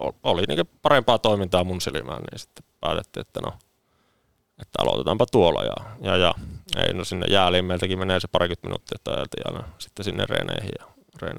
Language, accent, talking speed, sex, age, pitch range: Finnish, native, 165 wpm, male, 20-39, 90-110 Hz